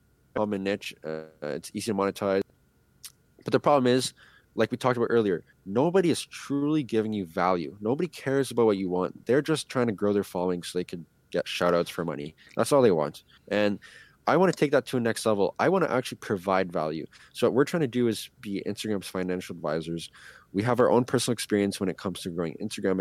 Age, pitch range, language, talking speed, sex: 20-39, 90-115 Hz, English, 225 wpm, male